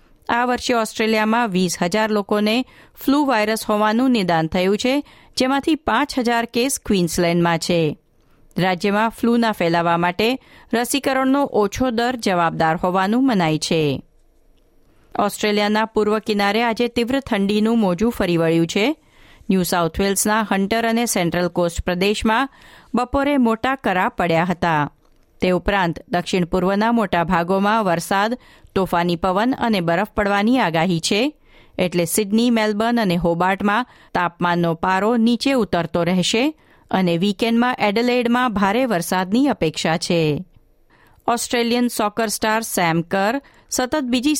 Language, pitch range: Gujarati, 175-235 Hz